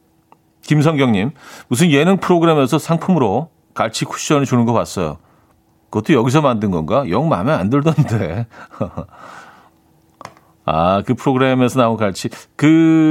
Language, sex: Korean, male